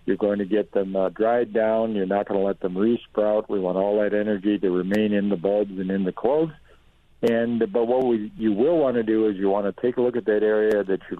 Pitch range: 100-115 Hz